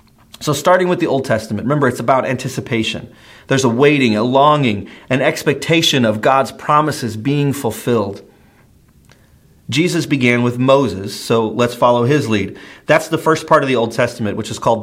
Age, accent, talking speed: 40-59, American, 170 wpm